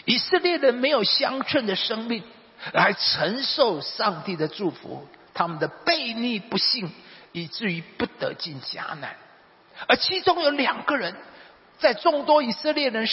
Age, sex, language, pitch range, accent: 50-69, male, Chinese, 215-305 Hz, native